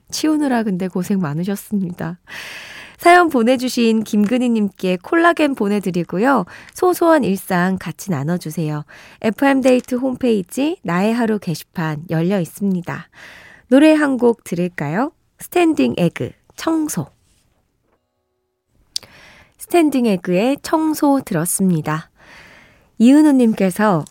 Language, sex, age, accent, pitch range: Korean, female, 20-39, native, 175-255 Hz